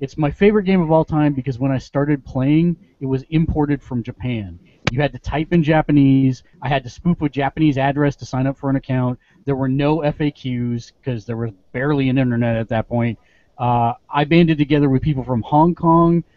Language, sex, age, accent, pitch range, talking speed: English, male, 30-49, American, 130-155 Hz, 215 wpm